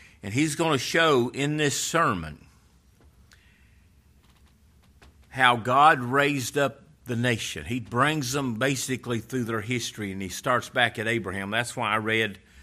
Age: 50-69